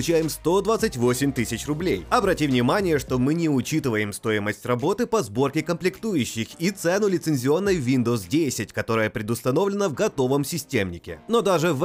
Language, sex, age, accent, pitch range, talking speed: Russian, male, 30-49, native, 115-185 Hz, 135 wpm